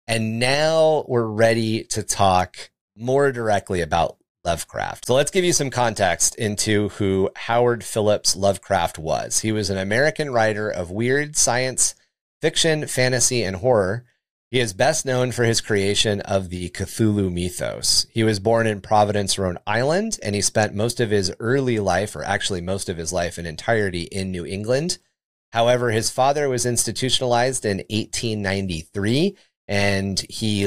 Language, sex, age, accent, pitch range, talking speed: English, male, 30-49, American, 95-125 Hz, 155 wpm